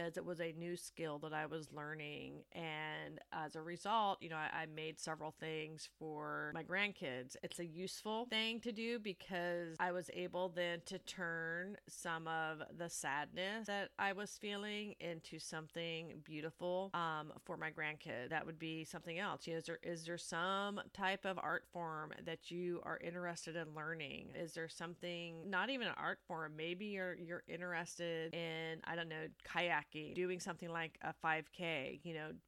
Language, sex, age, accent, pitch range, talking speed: English, female, 30-49, American, 155-175 Hz, 180 wpm